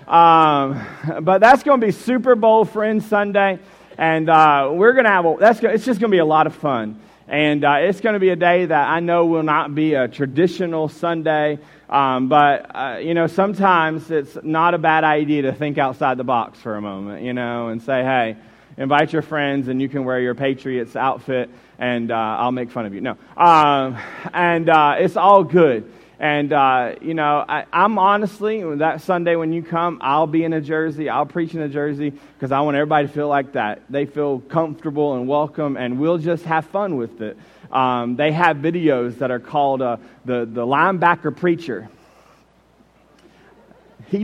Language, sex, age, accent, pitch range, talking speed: English, male, 30-49, American, 135-170 Hz, 200 wpm